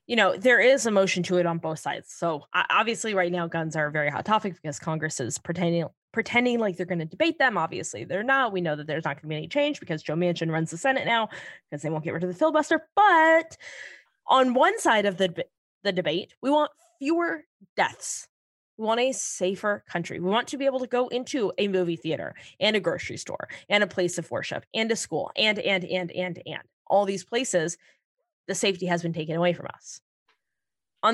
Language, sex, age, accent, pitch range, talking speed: English, female, 20-39, American, 180-300 Hz, 225 wpm